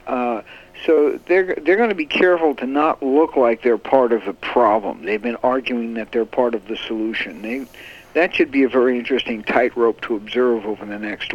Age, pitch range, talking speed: 60-79, 115-135 Hz, 205 wpm